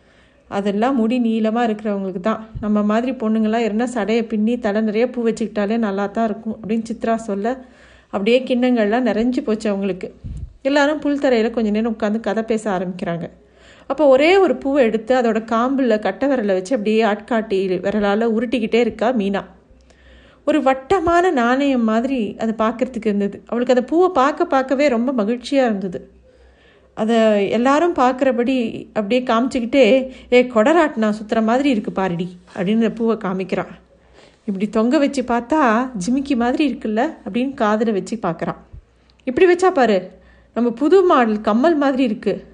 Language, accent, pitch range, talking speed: Tamil, native, 215-265 Hz, 140 wpm